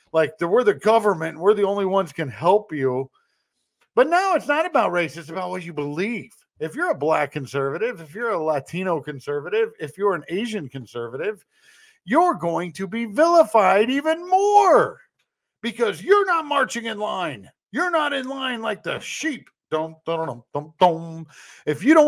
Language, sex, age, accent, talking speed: English, male, 50-69, American, 165 wpm